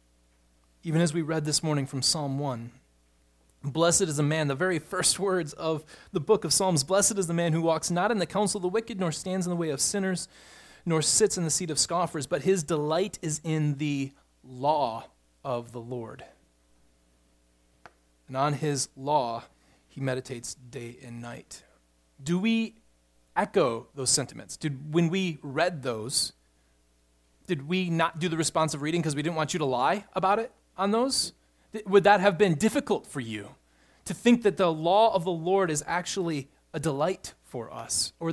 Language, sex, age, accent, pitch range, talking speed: English, male, 30-49, American, 120-175 Hz, 185 wpm